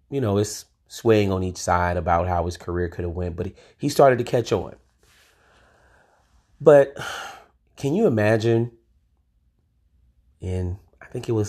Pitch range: 80-100 Hz